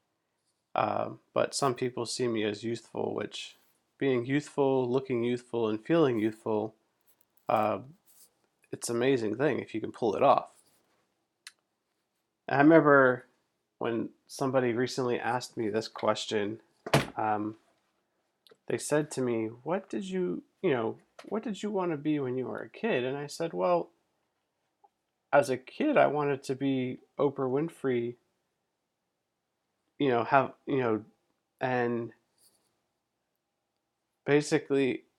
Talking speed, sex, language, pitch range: 130 wpm, male, English, 120-150 Hz